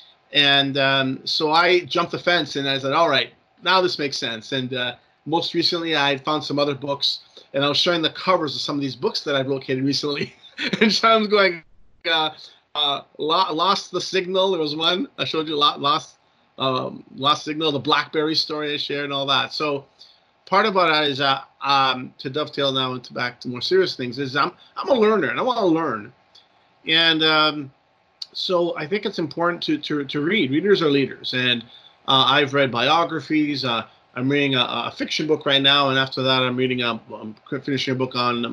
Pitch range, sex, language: 130-160 Hz, male, English